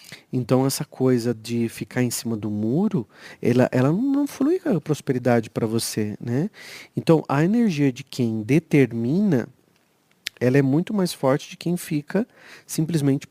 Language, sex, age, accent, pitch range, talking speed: Portuguese, male, 40-59, Brazilian, 125-180 Hz, 155 wpm